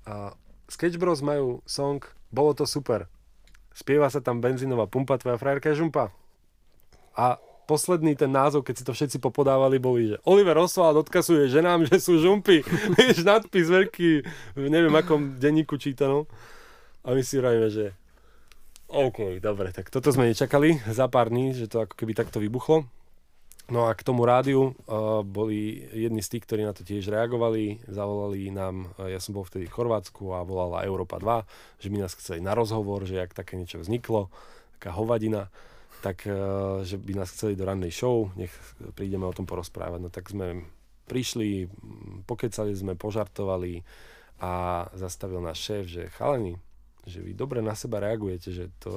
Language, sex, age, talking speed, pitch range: Slovak, male, 20-39, 170 wpm, 95-135 Hz